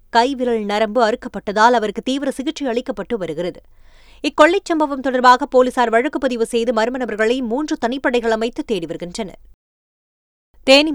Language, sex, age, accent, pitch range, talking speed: Tamil, female, 20-39, native, 215-255 Hz, 120 wpm